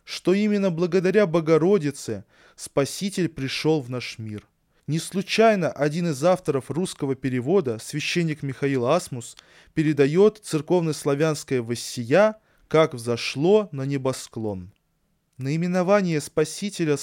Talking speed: 100 wpm